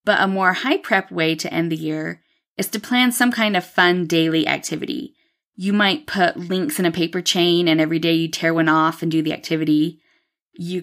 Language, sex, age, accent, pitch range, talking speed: English, female, 20-39, American, 165-200 Hz, 215 wpm